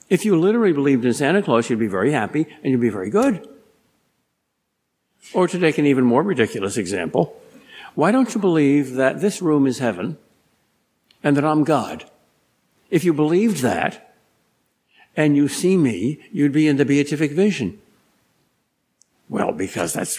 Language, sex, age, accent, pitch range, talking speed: English, male, 60-79, American, 135-205 Hz, 160 wpm